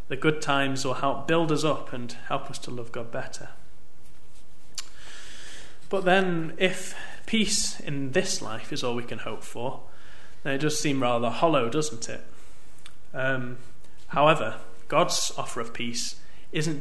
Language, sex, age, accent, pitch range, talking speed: English, male, 30-49, British, 120-150 Hz, 155 wpm